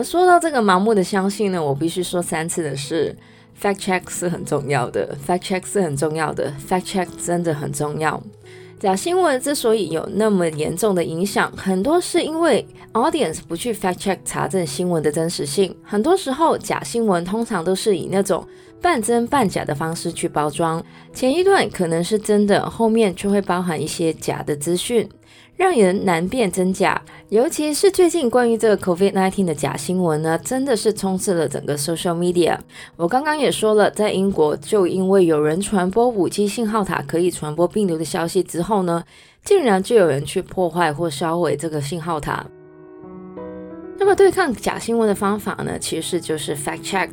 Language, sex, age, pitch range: Chinese, female, 20-39, 165-215 Hz